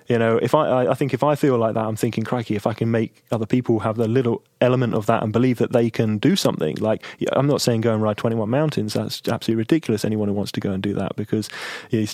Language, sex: English, male